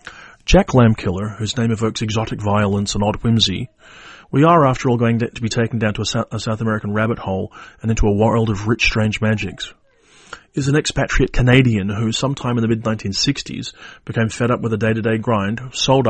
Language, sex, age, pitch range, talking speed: English, male, 30-49, 110-125 Hz, 190 wpm